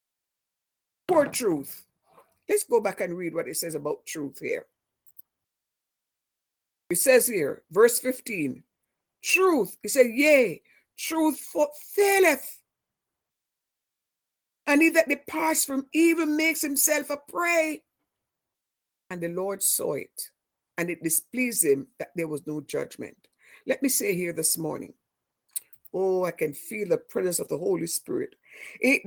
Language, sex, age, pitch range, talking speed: English, female, 50-69, 195-320 Hz, 135 wpm